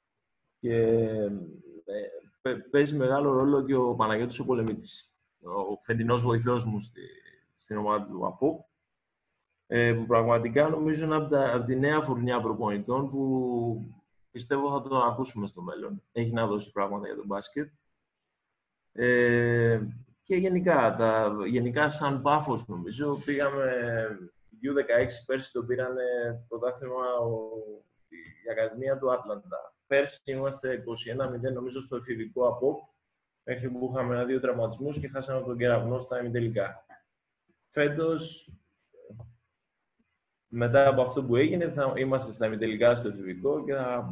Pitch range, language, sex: 115-140 Hz, Greek, male